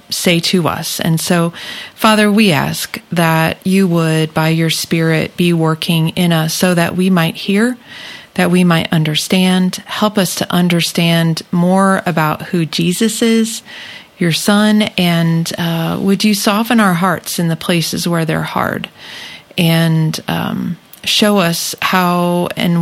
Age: 40-59